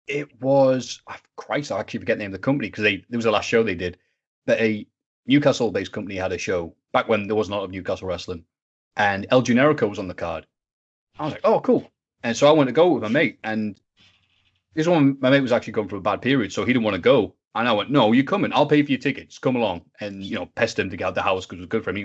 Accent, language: British, English